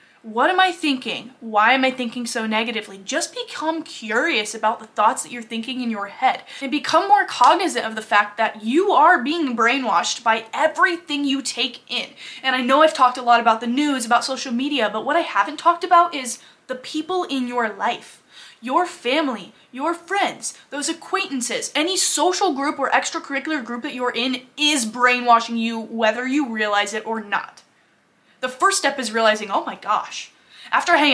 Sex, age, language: female, 10-29, English